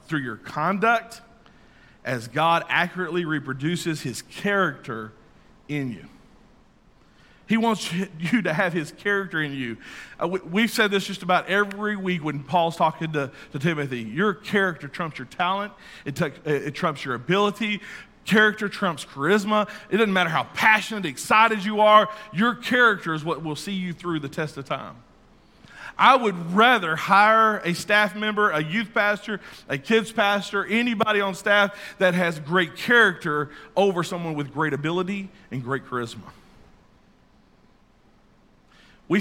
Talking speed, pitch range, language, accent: 145 wpm, 145-205 Hz, English, American